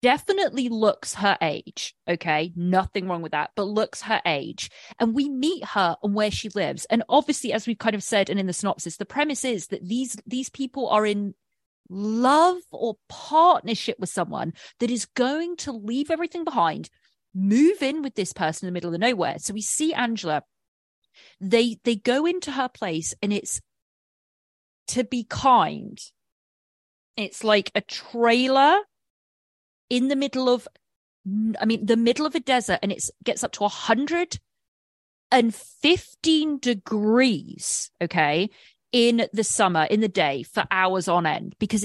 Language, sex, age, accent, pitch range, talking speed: English, female, 30-49, British, 190-255 Hz, 160 wpm